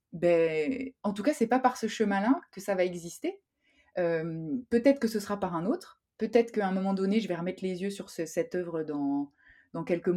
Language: French